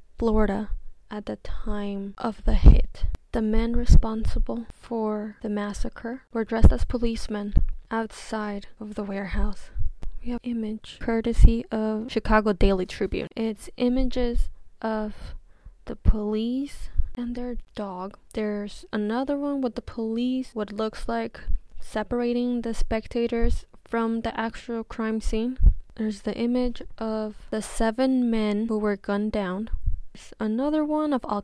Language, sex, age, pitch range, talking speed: English, female, 10-29, 210-235 Hz, 130 wpm